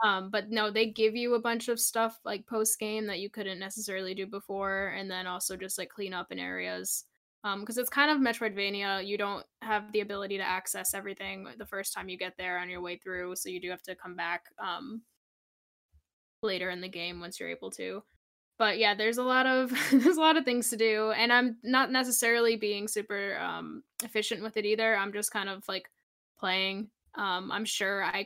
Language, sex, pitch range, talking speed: English, female, 185-225 Hz, 215 wpm